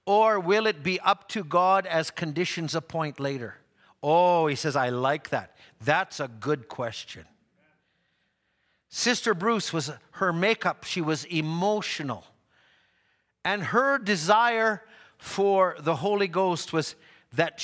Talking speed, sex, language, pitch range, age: 130 wpm, male, English, 140-185 Hz, 50-69